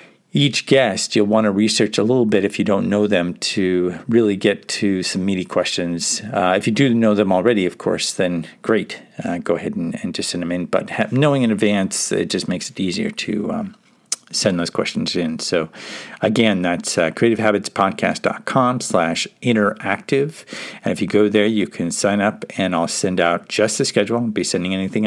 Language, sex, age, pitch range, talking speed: English, male, 50-69, 90-115 Hz, 195 wpm